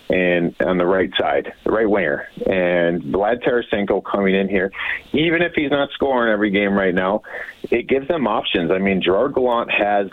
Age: 40-59